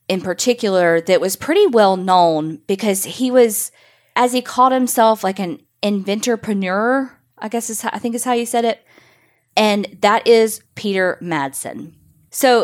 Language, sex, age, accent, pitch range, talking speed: English, female, 20-39, American, 170-240 Hz, 155 wpm